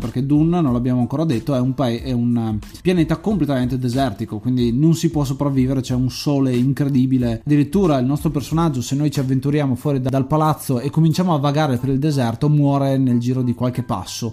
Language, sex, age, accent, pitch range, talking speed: Italian, male, 20-39, native, 125-165 Hz, 200 wpm